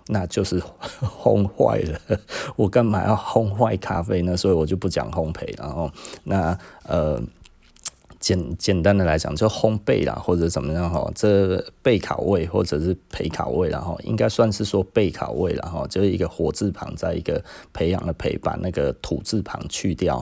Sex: male